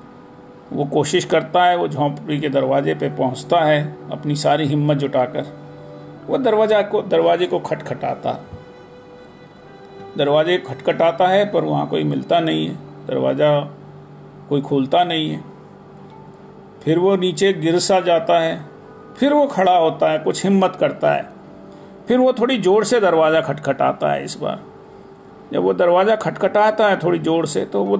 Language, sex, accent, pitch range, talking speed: Hindi, male, native, 150-205 Hz, 155 wpm